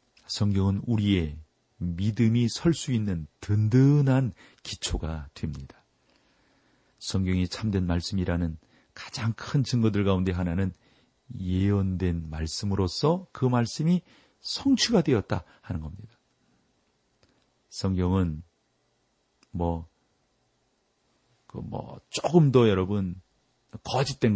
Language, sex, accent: Korean, male, native